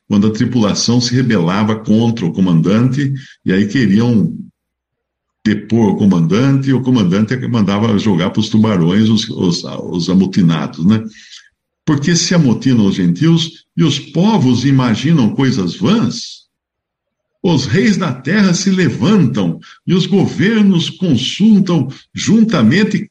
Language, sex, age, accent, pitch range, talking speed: Portuguese, male, 60-79, Brazilian, 110-170 Hz, 125 wpm